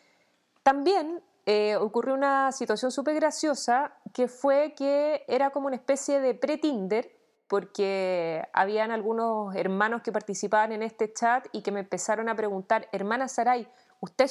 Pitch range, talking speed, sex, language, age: 205-285 Hz, 145 wpm, female, Spanish, 20-39